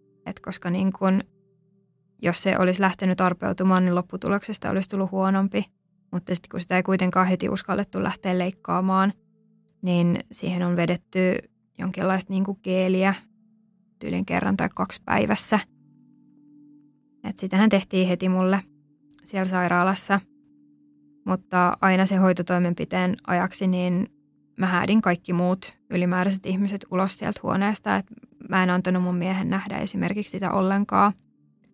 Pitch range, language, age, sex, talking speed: 185-210 Hz, Finnish, 20-39, female, 130 wpm